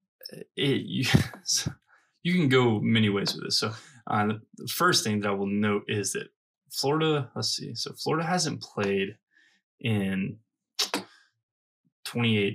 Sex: male